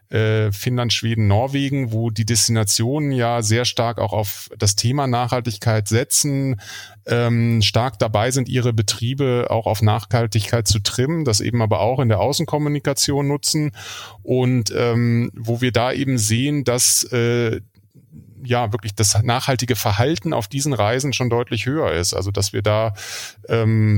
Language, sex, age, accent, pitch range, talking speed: German, male, 30-49, German, 105-125 Hz, 155 wpm